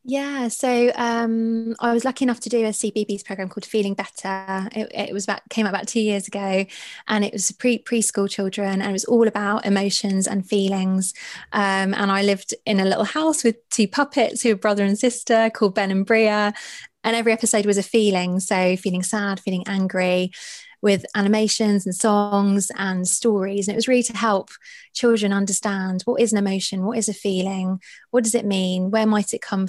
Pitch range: 195-225 Hz